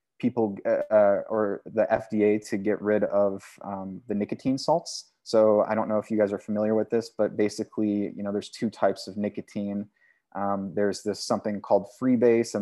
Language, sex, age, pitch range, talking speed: English, male, 20-39, 100-110 Hz, 200 wpm